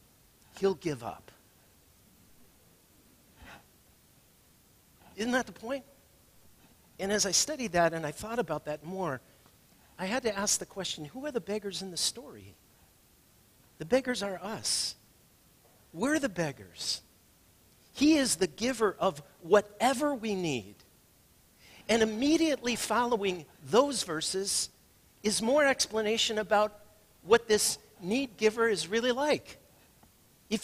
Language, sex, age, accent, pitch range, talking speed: English, male, 50-69, American, 170-235 Hz, 125 wpm